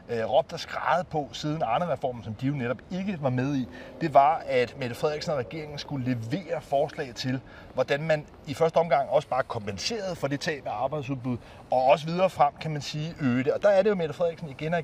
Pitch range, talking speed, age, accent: 135-175 Hz, 220 wpm, 30-49, native